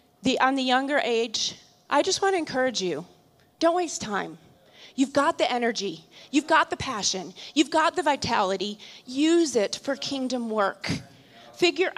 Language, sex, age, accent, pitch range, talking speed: English, female, 30-49, American, 230-280 Hz, 155 wpm